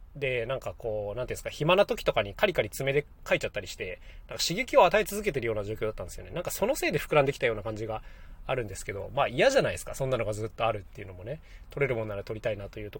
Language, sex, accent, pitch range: Japanese, male, native, 100-140 Hz